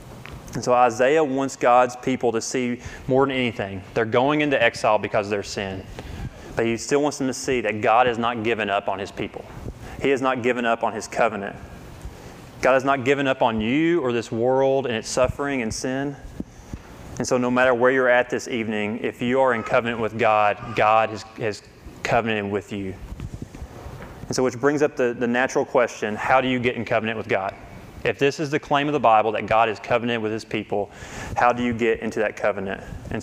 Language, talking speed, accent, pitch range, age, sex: English, 215 wpm, American, 115-130 Hz, 20-39, male